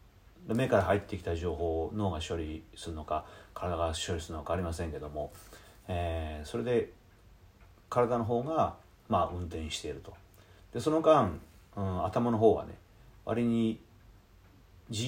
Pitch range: 85-110 Hz